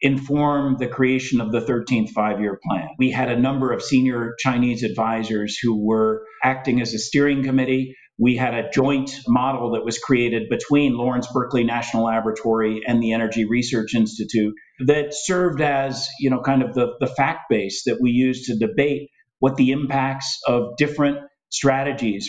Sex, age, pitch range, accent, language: male, 50-69, 120-140 Hz, American, Chinese